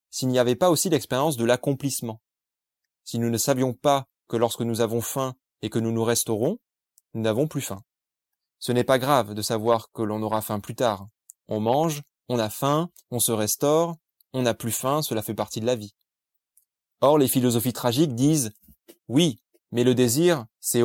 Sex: male